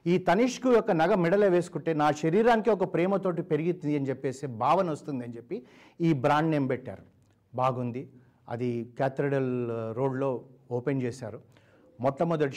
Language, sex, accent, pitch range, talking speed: Telugu, male, native, 125-155 Hz, 135 wpm